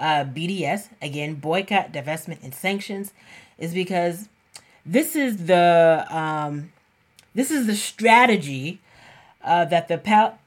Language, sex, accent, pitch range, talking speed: English, female, American, 155-200 Hz, 120 wpm